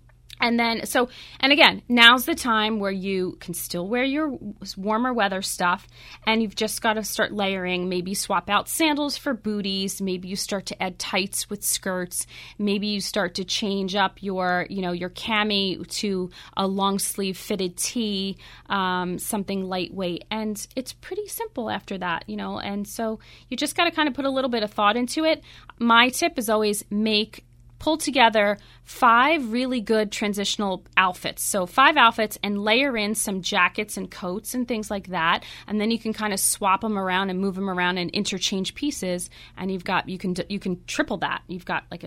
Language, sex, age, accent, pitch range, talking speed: English, female, 30-49, American, 185-230 Hz, 195 wpm